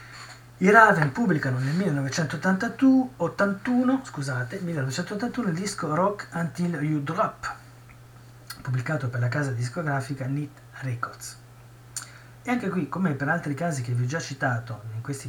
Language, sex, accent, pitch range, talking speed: Italian, male, native, 120-150 Hz, 135 wpm